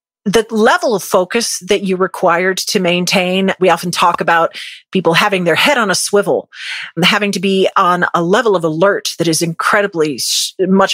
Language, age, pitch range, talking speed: English, 40-59, 180-230 Hz, 175 wpm